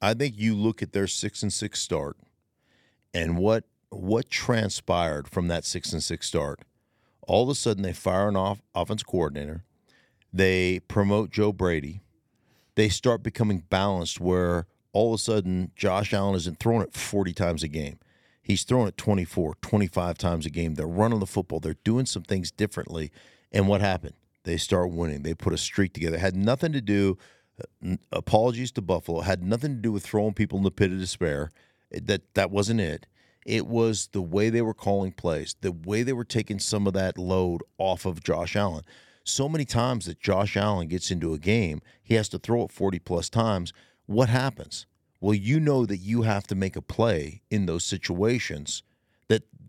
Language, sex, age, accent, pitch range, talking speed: English, male, 50-69, American, 90-110 Hz, 195 wpm